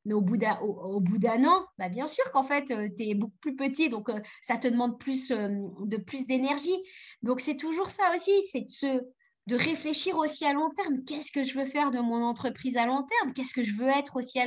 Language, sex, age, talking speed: French, female, 20-39, 235 wpm